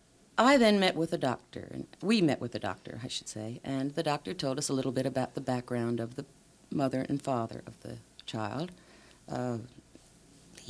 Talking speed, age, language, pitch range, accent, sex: 195 wpm, 50-69, English, 135-175 Hz, American, female